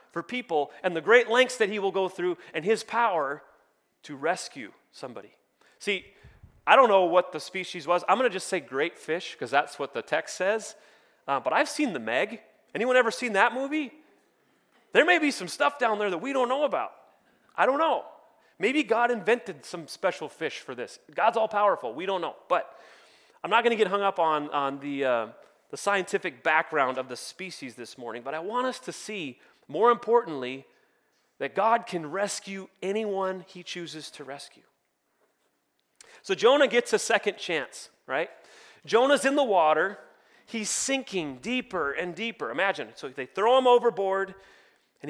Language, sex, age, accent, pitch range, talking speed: English, male, 30-49, American, 170-240 Hz, 185 wpm